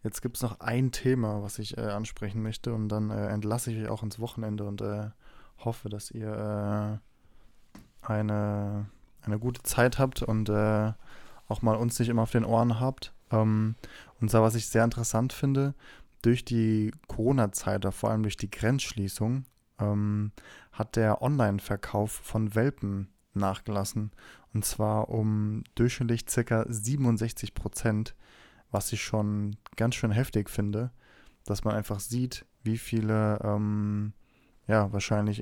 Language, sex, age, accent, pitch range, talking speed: German, male, 20-39, German, 105-115 Hz, 150 wpm